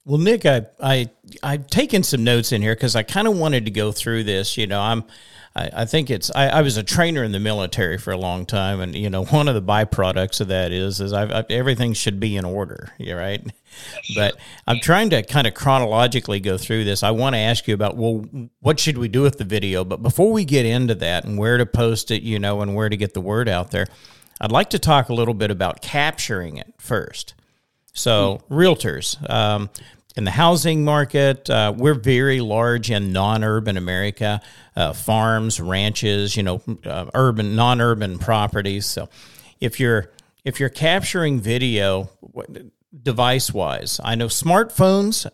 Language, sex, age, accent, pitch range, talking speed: English, male, 50-69, American, 105-135 Hz, 195 wpm